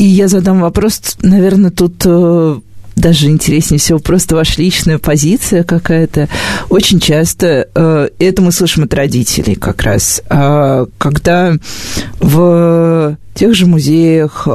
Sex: female